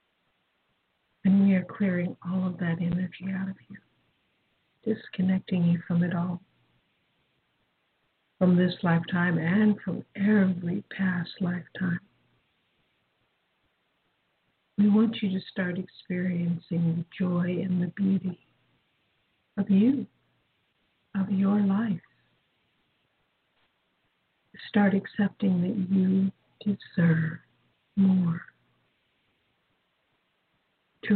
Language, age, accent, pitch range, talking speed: English, 60-79, American, 175-195 Hz, 90 wpm